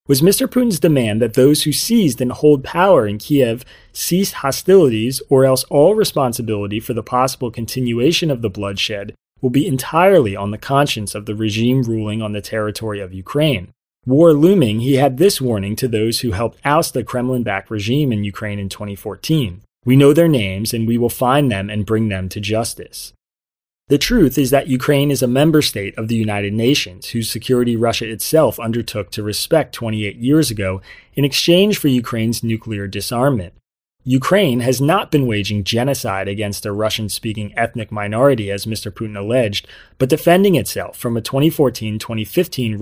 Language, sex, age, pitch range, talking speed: English, male, 30-49, 105-140 Hz, 170 wpm